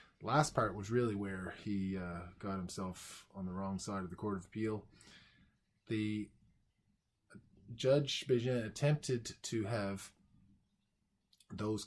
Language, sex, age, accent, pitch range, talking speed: English, male, 20-39, American, 95-120 Hz, 130 wpm